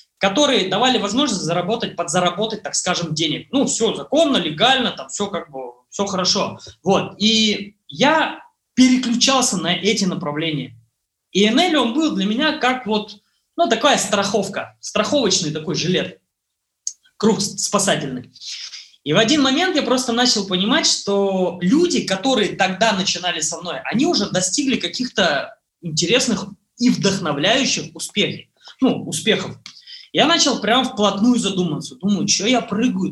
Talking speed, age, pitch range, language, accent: 135 wpm, 20-39, 170-235 Hz, Russian, native